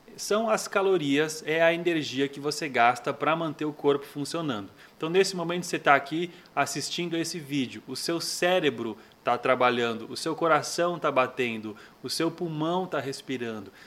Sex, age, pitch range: male, 20-39, 140-180 Hz